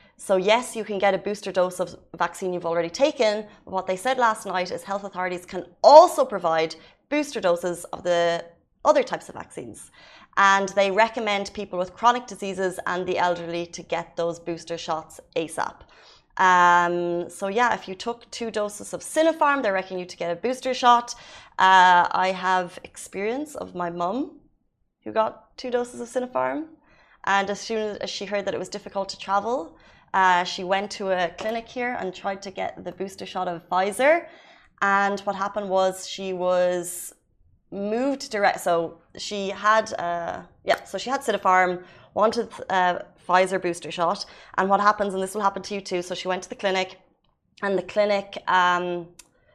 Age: 30-49